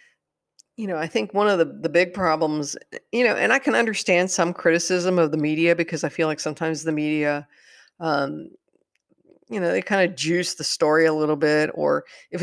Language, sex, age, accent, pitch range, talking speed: English, female, 50-69, American, 150-180 Hz, 205 wpm